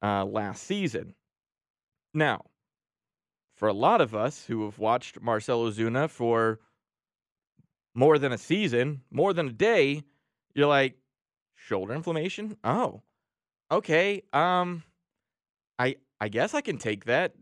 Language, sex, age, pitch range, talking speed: English, male, 30-49, 115-155 Hz, 125 wpm